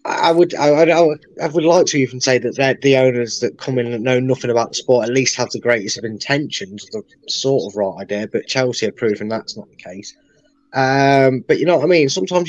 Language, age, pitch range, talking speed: English, 10-29, 125-175 Hz, 245 wpm